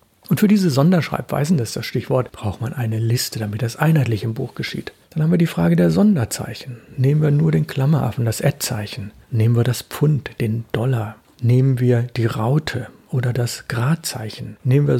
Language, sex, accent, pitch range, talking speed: German, male, German, 115-155 Hz, 190 wpm